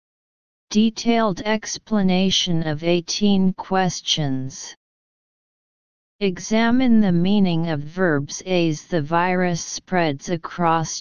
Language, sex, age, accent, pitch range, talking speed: English, female, 40-59, American, 160-195 Hz, 80 wpm